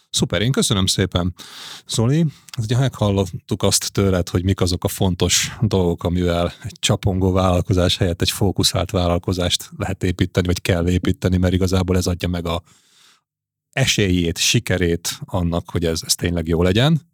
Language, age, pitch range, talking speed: Hungarian, 30-49, 90-110 Hz, 150 wpm